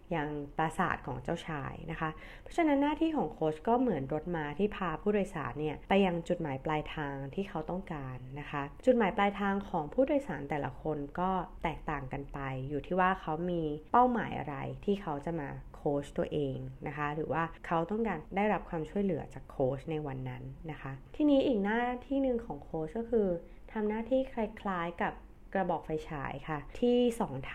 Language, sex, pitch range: Thai, female, 155-210 Hz